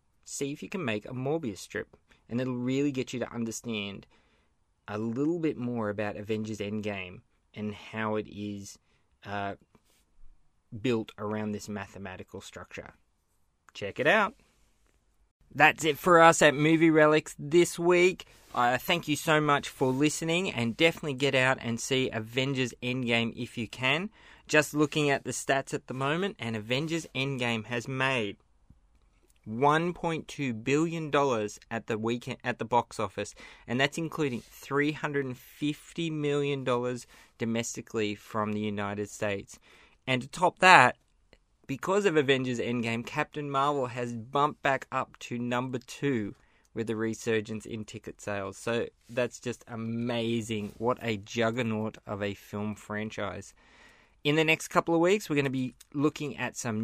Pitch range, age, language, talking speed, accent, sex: 110-145 Hz, 20-39, English, 150 wpm, Australian, male